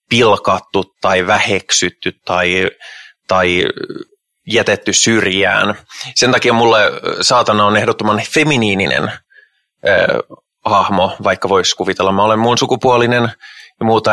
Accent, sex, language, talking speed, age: native, male, Finnish, 105 wpm, 20-39